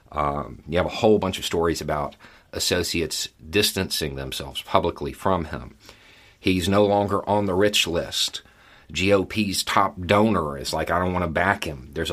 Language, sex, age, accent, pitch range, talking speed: English, male, 40-59, American, 85-105 Hz, 170 wpm